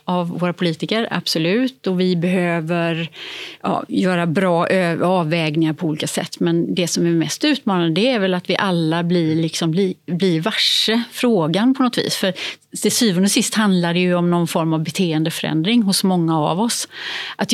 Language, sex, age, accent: Swedish, female, 30-49, native